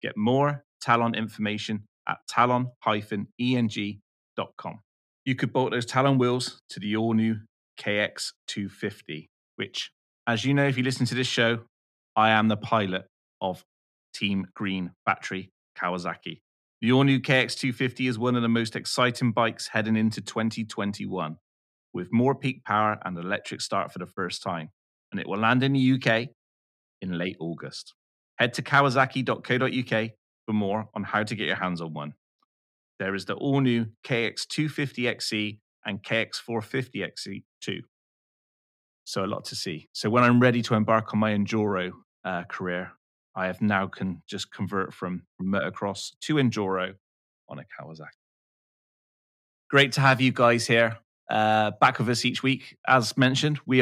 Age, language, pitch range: 30-49, English, 95-125 Hz